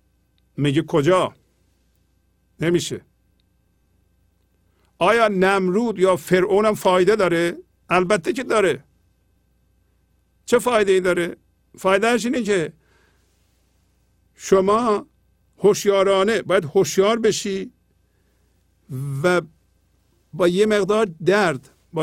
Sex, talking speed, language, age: male, 80 wpm, Persian, 50-69